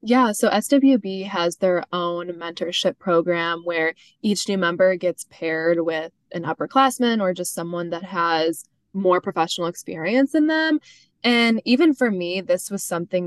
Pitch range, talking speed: 170-205 Hz, 155 wpm